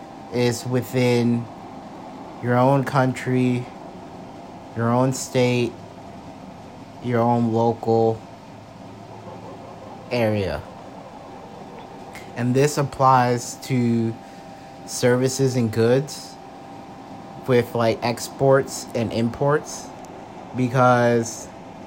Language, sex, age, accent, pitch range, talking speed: English, male, 30-49, American, 110-125 Hz, 70 wpm